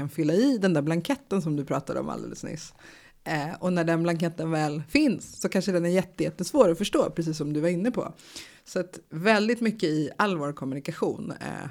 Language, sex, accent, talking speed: Swedish, female, native, 200 wpm